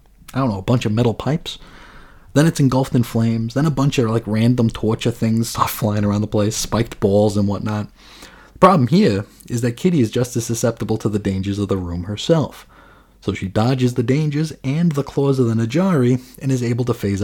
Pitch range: 105-135 Hz